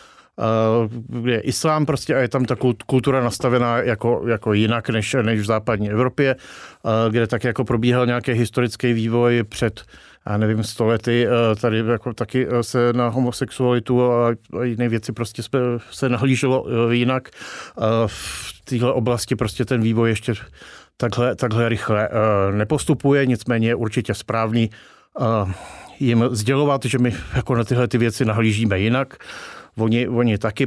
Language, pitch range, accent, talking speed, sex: Czech, 115-130 Hz, native, 155 wpm, male